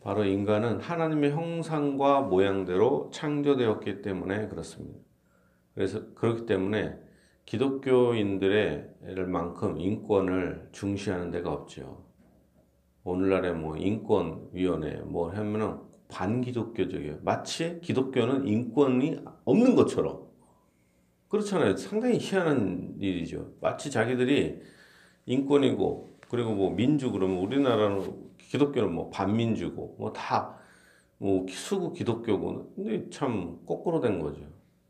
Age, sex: 40-59, male